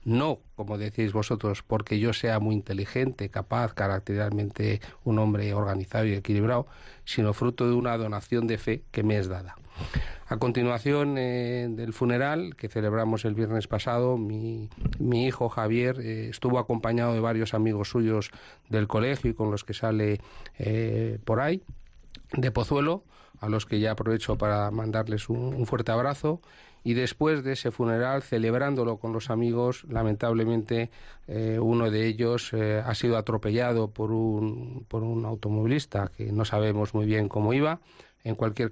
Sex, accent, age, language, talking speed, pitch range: male, Spanish, 40-59, Spanish, 160 wpm, 105-120 Hz